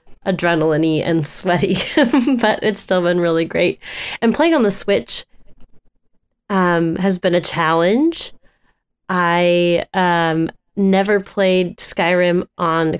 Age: 20-39